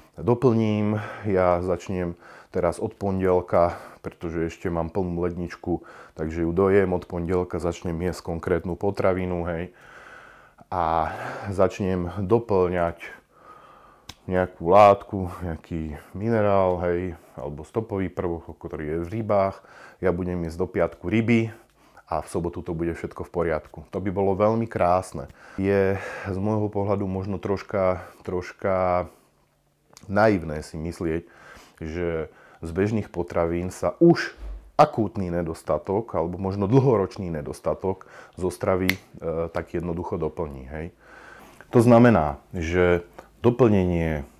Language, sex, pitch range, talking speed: Slovak, male, 85-100 Hz, 120 wpm